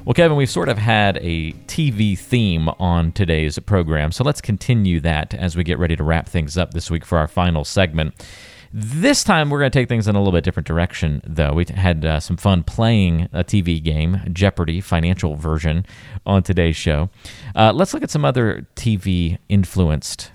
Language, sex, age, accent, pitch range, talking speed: English, male, 40-59, American, 85-110 Hz, 195 wpm